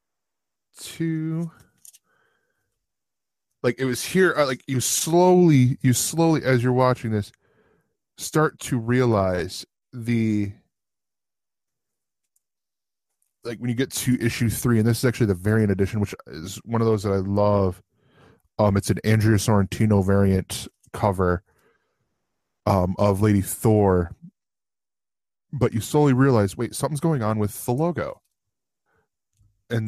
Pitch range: 105-135 Hz